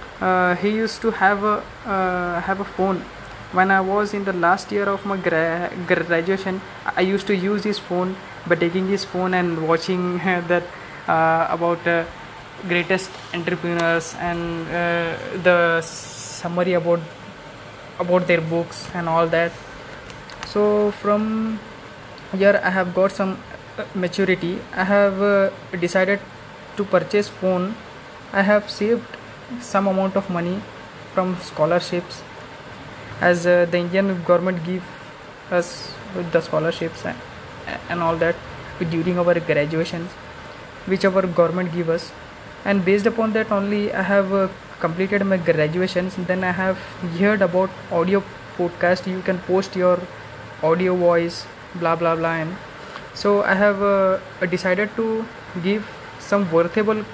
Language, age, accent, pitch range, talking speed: English, 20-39, Indian, 170-195 Hz, 140 wpm